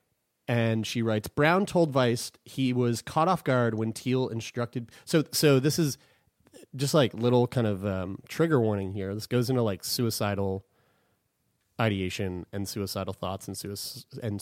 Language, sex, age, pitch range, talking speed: English, male, 30-49, 110-140 Hz, 160 wpm